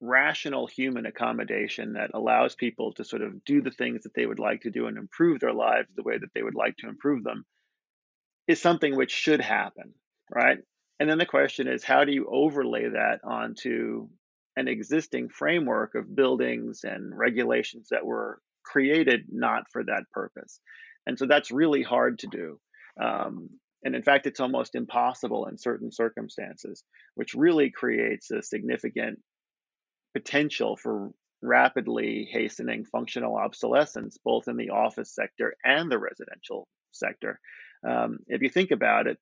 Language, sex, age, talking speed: English, male, 30-49, 160 wpm